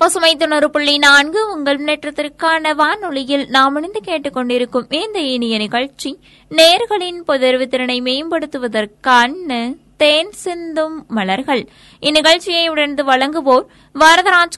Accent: native